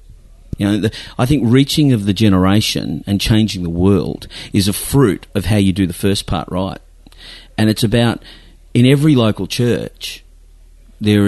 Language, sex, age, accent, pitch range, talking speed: English, male, 40-59, Australian, 90-110 Hz, 170 wpm